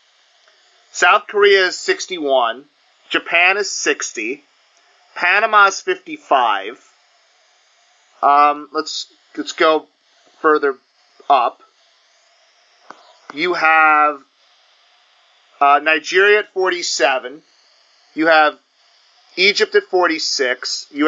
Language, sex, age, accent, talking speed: English, male, 40-59, American, 80 wpm